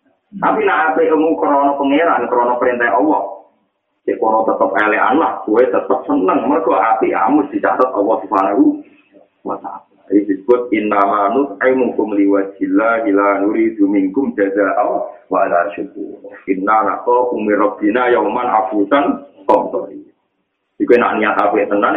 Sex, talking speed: male, 135 wpm